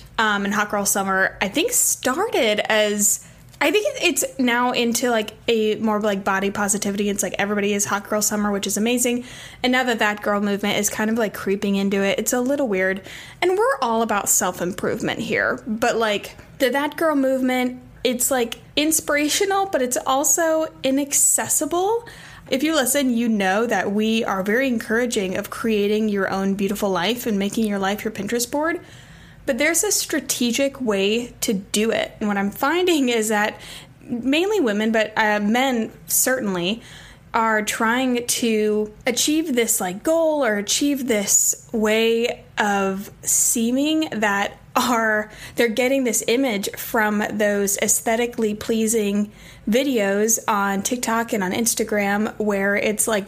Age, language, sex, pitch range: 10-29, English, female, 205-250 Hz